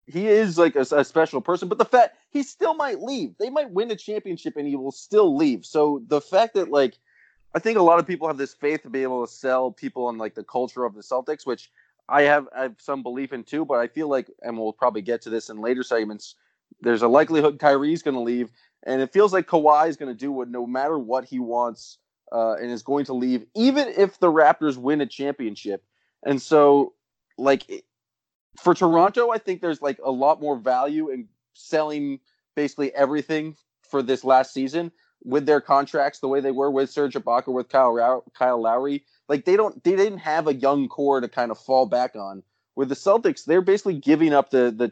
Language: English